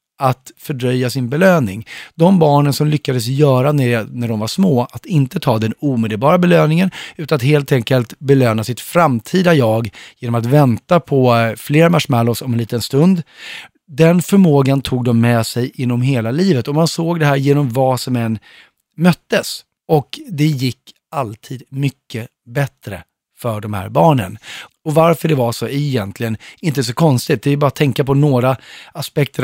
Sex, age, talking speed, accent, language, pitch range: male, 30-49, 170 wpm, native, Swedish, 115-155 Hz